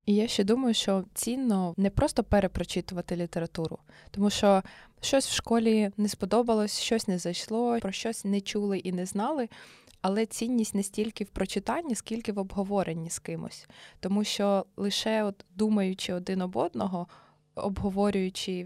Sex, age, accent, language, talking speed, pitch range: female, 20-39, native, Ukrainian, 150 wpm, 185-210 Hz